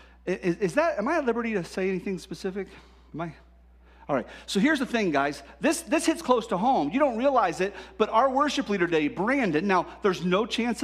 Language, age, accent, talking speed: English, 40-59, American, 220 wpm